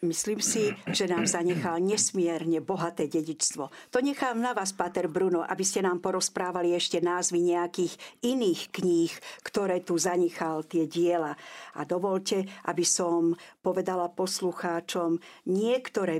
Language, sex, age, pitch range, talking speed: Slovak, female, 50-69, 170-210 Hz, 130 wpm